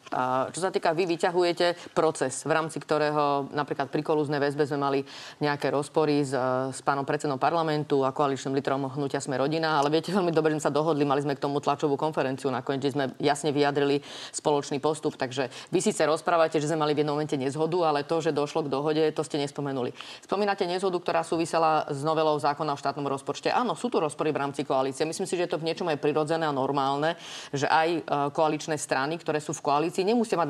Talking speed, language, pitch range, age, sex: 210 wpm, Slovak, 145-165 Hz, 30-49, female